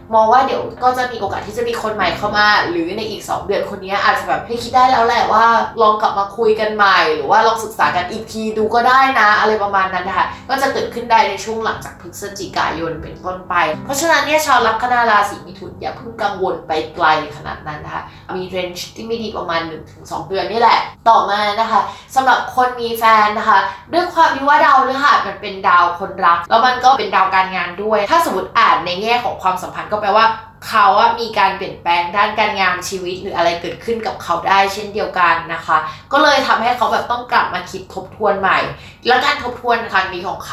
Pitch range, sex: 180-240 Hz, female